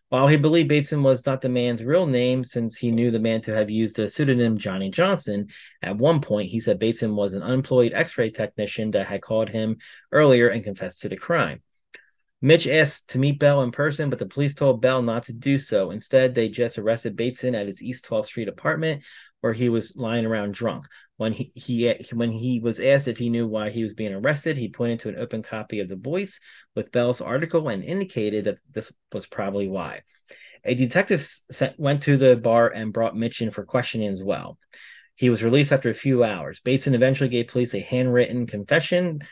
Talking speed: 210 wpm